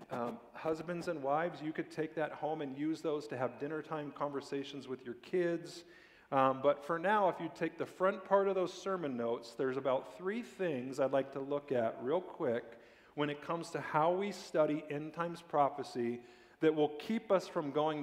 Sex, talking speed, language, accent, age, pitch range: male, 200 wpm, English, American, 40-59, 125-160 Hz